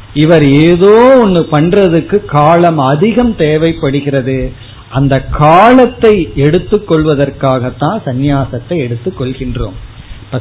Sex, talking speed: male, 75 wpm